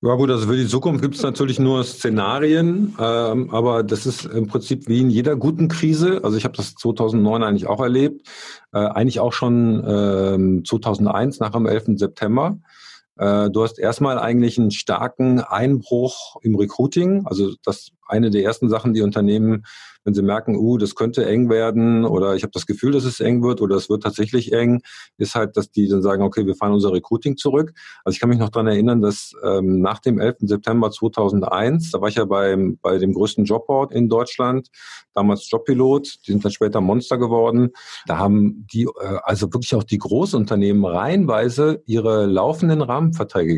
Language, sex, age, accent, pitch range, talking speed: German, male, 50-69, German, 105-130 Hz, 190 wpm